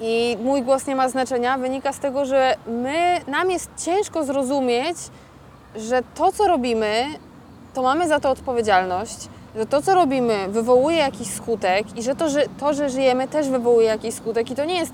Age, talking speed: 20-39, 180 wpm